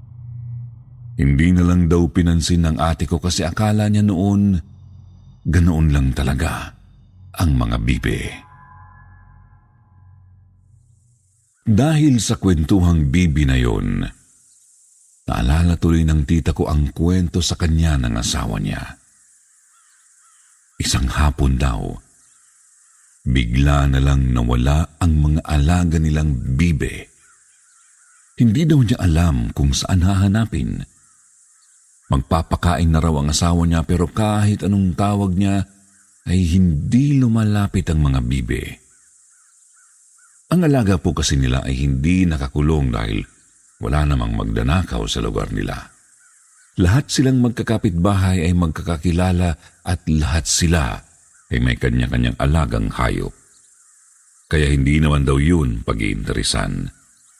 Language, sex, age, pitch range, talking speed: Filipino, male, 50-69, 75-100 Hz, 110 wpm